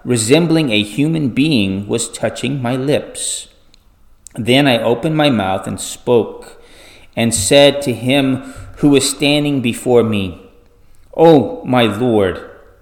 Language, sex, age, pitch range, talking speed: English, male, 30-49, 100-130 Hz, 125 wpm